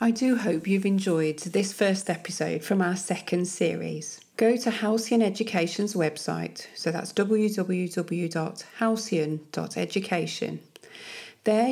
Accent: British